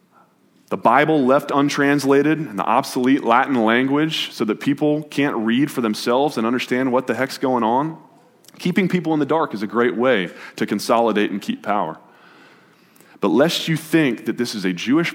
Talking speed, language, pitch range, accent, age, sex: 180 wpm, English, 110-155 Hz, American, 20-39, male